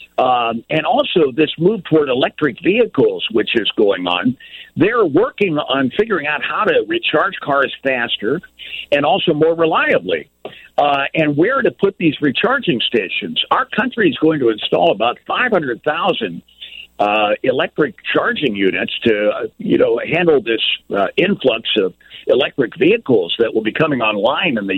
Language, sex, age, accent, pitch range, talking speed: English, male, 50-69, American, 135-220 Hz, 155 wpm